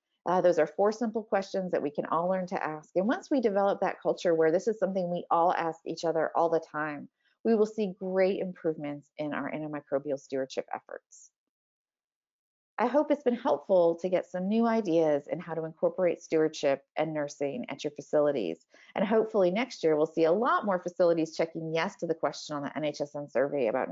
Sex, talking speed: female, 205 wpm